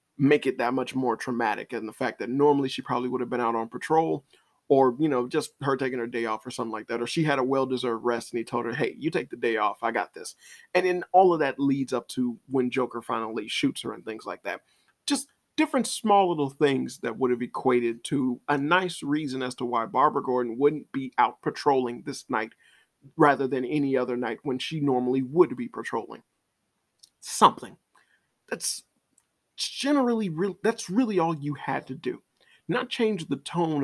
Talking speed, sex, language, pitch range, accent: 205 wpm, male, English, 125-155 Hz, American